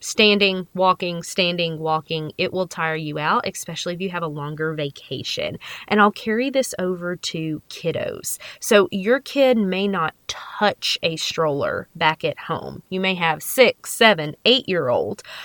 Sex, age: female, 30-49